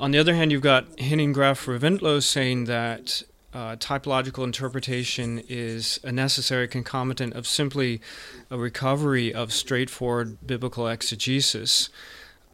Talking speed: 120 wpm